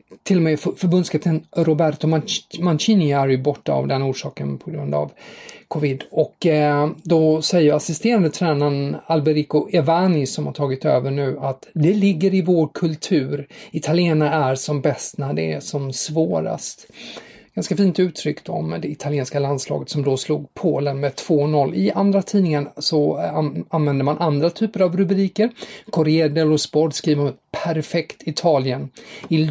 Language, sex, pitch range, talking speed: English, male, 140-170 Hz, 150 wpm